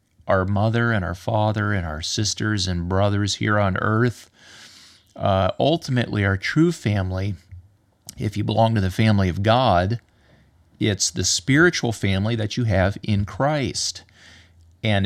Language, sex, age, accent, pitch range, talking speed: English, male, 30-49, American, 95-120 Hz, 145 wpm